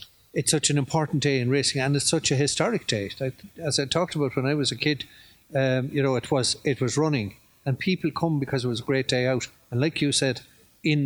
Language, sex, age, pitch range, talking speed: English, male, 50-69, 125-145 Hz, 245 wpm